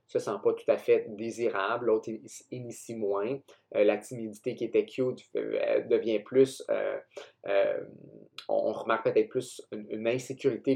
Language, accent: French, Canadian